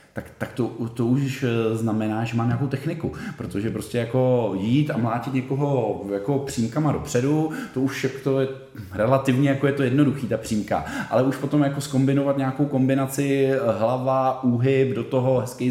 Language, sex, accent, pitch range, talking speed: Czech, male, native, 100-135 Hz, 165 wpm